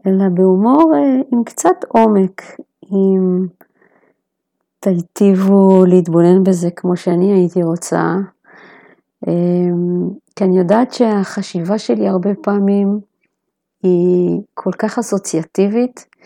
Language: Hebrew